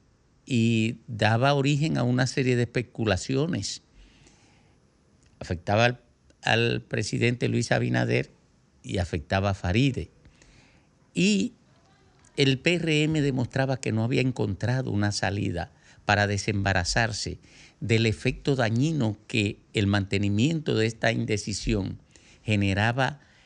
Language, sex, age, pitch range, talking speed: Spanish, male, 50-69, 100-130 Hz, 100 wpm